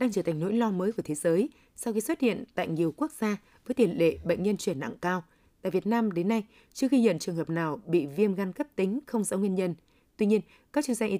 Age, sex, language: 20-39, female, Vietnamese